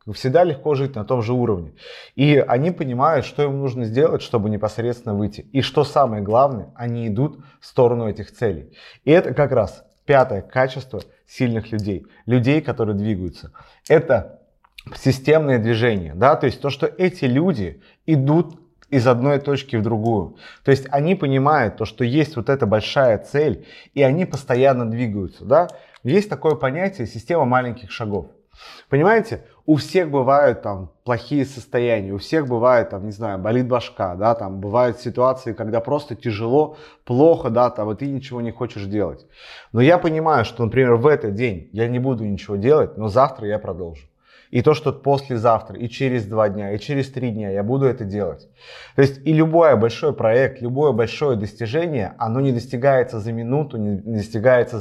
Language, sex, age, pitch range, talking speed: Russian, male, 30-49, 110-140 Hz, 170 wpm